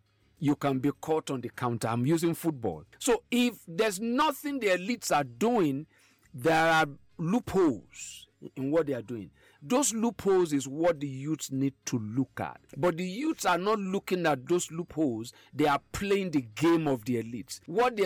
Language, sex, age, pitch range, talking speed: English, male, 50-69, 135-195 Hz, 185 wpm